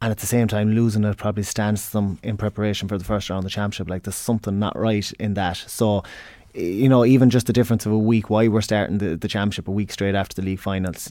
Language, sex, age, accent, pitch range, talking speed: English, male, 20-39, Irish, 100-110 Hz, 270 wpm